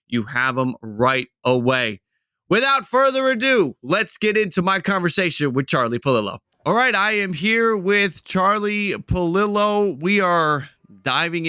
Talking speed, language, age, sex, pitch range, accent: 140 wpm, English, 30-49, male, 125-160 Hz, American